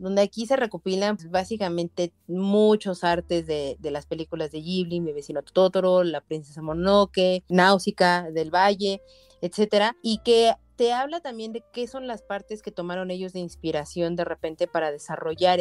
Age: 30-49